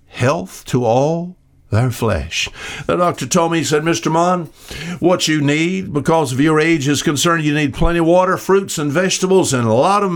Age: 60-79